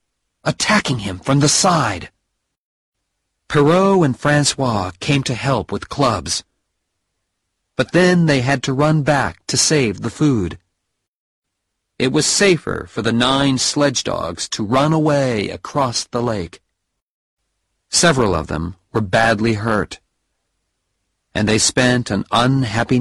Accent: American